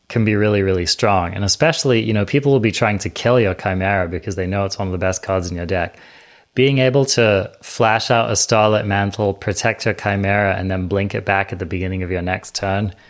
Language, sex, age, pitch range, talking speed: English, male, 20-39, 95-110 Hz, 240 wpm